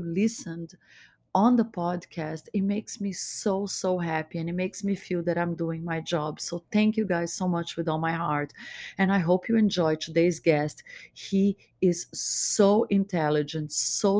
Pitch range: 155-180 Hz